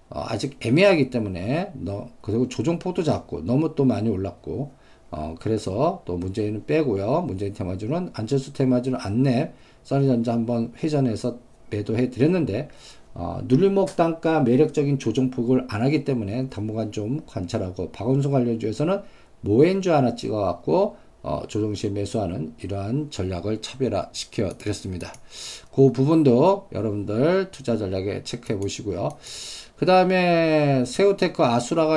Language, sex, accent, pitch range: Korean, male, native, 110-150 Hz